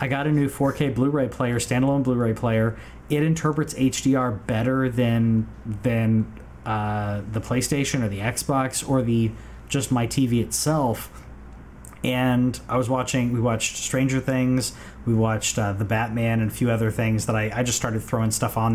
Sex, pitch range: male, 105-130 Hz